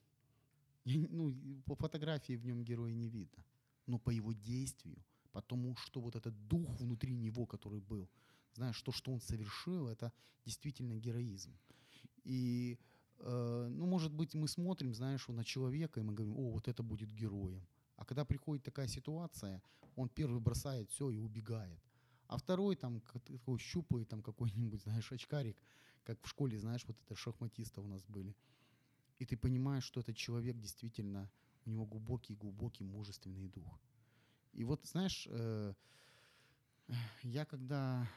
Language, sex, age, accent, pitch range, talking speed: Ukrainian, male, 30-49, native, 110-135 Hz, 150 wpm